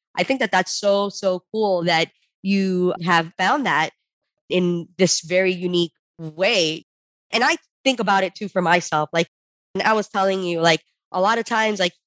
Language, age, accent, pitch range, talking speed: English, 20-39, American, 170-195 Hz, 180 wpm